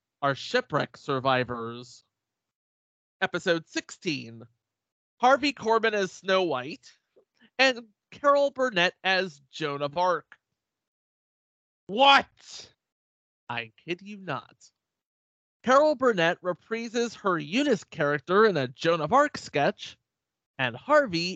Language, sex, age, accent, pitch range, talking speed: English, male, 30-49, American, 125-205 Hz, 100 wpm